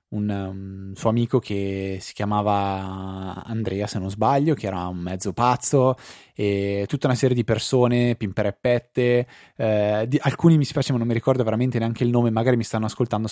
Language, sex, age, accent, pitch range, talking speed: Italian, male, 20-39, native, 100-120 Hz, 180 wpm